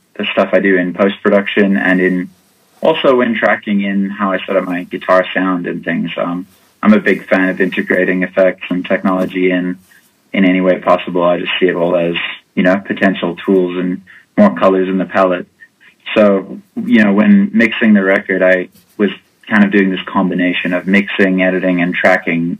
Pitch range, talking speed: 90-100 Hz, 190 wpm